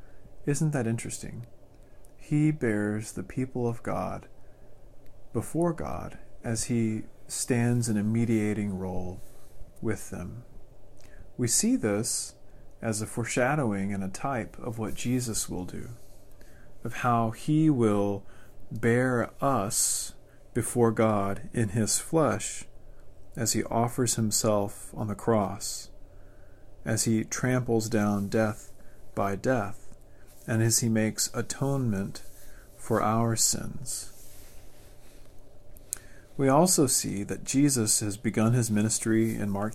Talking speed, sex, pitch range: 120 wpm, male, 100-120 Hz